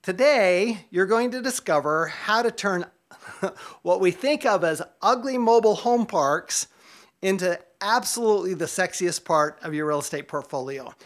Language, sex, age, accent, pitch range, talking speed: English, male, 40-59, American, 160-200 Hz, 145 wpm